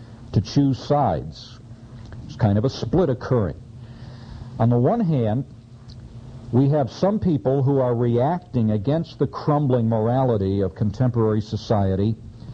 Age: 50-69